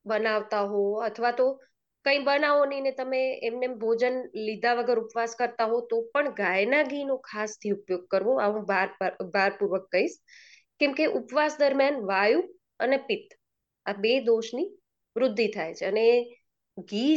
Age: 20-39